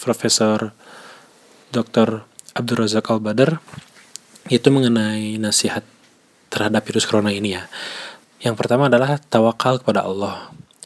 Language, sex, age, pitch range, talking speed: Indonesian, male, 20-39, 105-125 Hz, 105 wpm